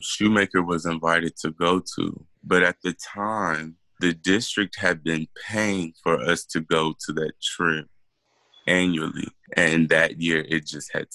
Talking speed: 155 wpm